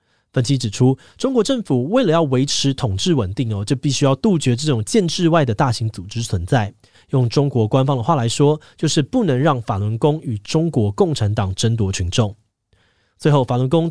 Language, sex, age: Chinese, male, 20-39